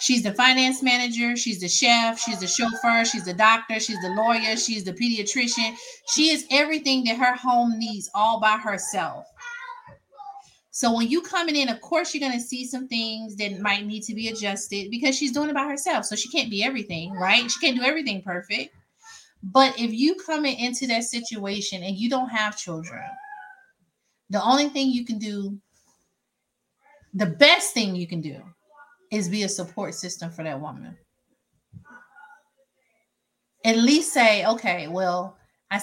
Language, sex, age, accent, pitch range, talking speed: English, female, 30-49, American, 205-265 Hz, 170 wpm